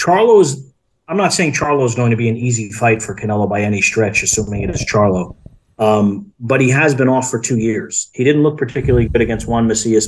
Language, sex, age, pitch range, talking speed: English, male, 40-59, 105-125 Hz, 230 wpm